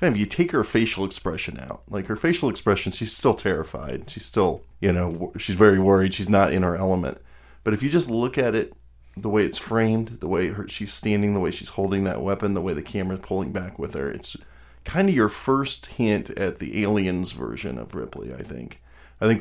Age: 30-49